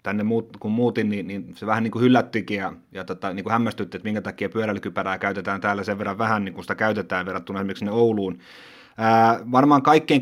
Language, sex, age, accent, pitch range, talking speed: Finnish, male, 30-49, native, 105-125 Hz, 205 wpm